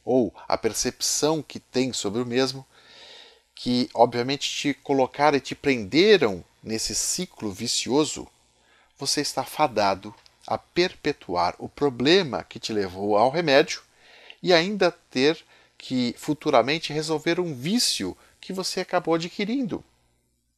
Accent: Brazilian